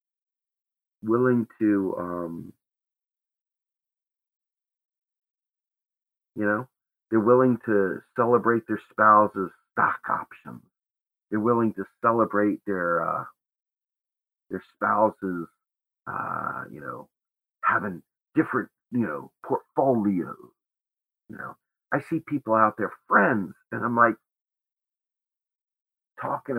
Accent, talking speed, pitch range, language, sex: American, 95 wpm, 100-115 Hz, English, male